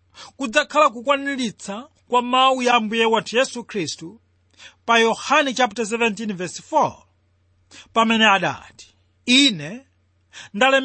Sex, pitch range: male, 155-255 Hz